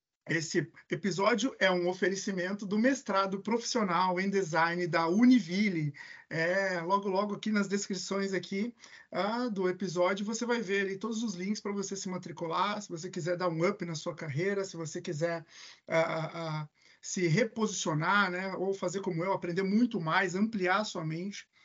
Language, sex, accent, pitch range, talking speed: Portuguese, male, Brazilian, 175-215 Hz, 170 wpm